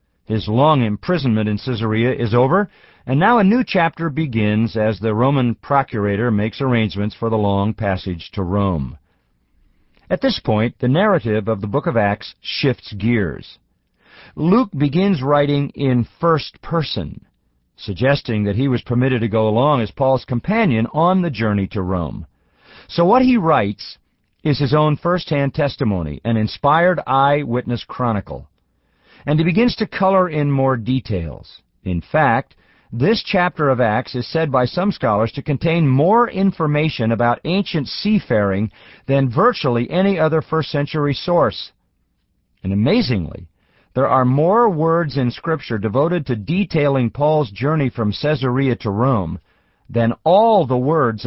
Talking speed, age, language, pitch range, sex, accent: 145 wpm, 50-69, English, 110-155 Hz, male, American